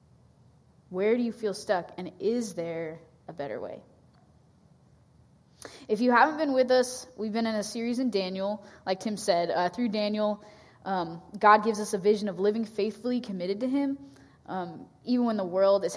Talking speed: 180 wpm